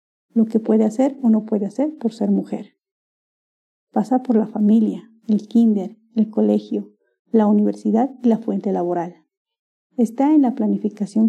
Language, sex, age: Spanish, female, 50-69